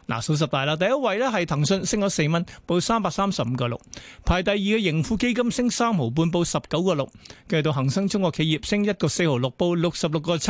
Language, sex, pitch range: Chinese, male, 150-195 Hz